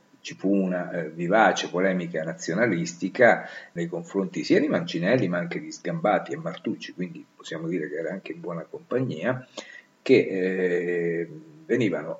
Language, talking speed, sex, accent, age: Italian, 150 wpm, male, native, 50-69